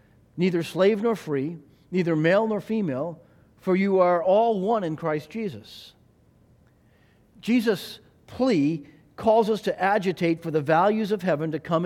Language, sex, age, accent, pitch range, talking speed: English, male, 50-69, American, 140-190 Hz, 145 wpm